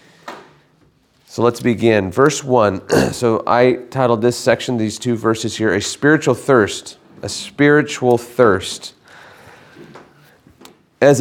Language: English